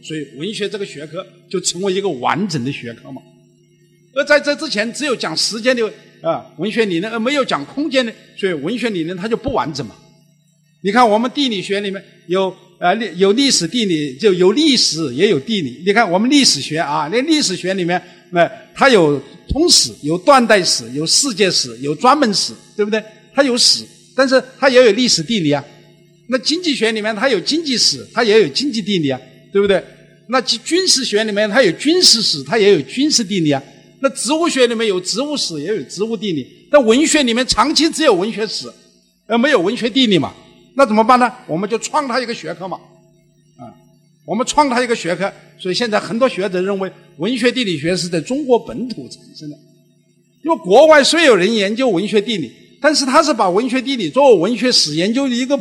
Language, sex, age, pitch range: Chinese, male, 60-79, 175-260 Hz